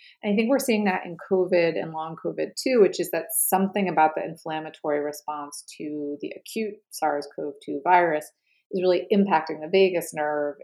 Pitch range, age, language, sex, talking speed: 155-210 Hz, 30-49, English, female, 170 wpm